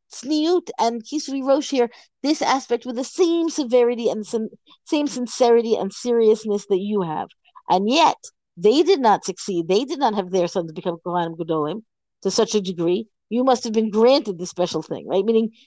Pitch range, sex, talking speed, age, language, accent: 195-270 Hz, female, 190 wpm, 50-69, English, American